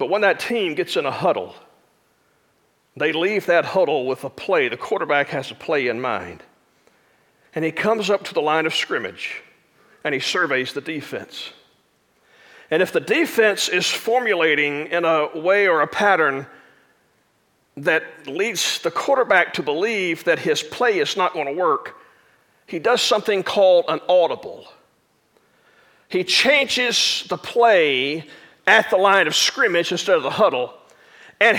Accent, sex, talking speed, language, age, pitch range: American, male, 155 wpm, English, 40-59, 180-275 Hz